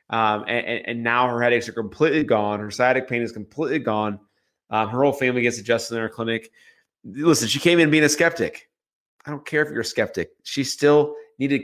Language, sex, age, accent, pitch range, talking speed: English, male, 30-49, American, 115-130 Hz, 215 wpm